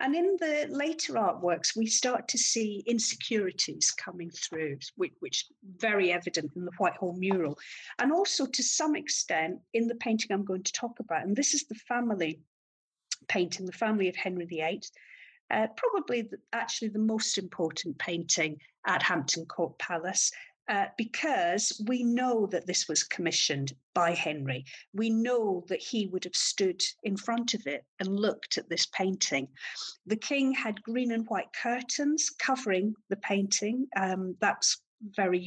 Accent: British